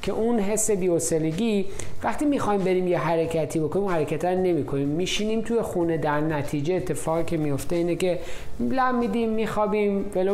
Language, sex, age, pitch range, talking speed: Persian, male, 50-69, 150-200 Hz, 165 wpm